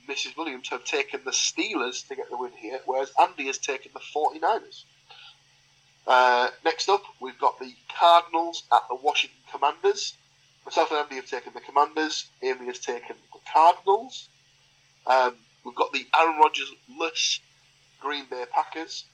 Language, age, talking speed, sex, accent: English, 10-29, 155 wpm, male, British